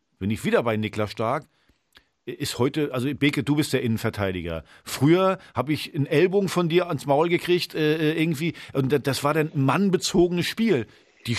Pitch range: 125-155 Hz